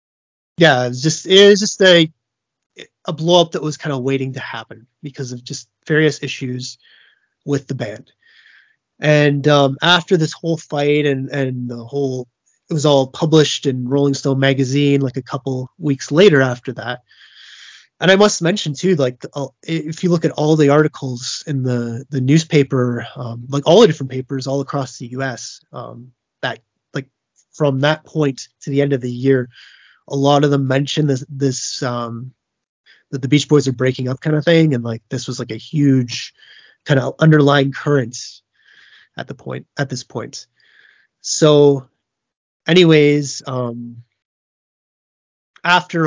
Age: 20-39